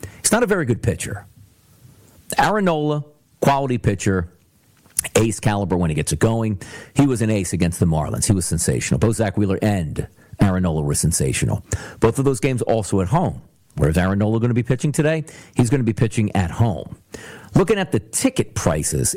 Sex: male